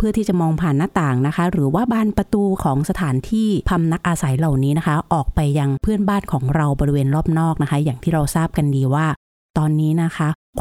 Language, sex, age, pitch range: Thai, female, 30-49, 140-180 Hz